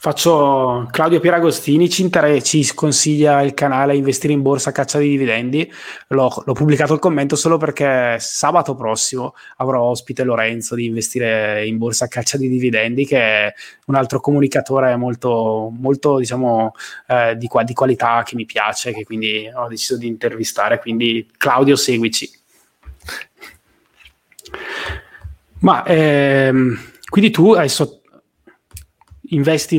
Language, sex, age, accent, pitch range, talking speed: Italian, male, 20-39, native, 120-155 Hz, 135 wpm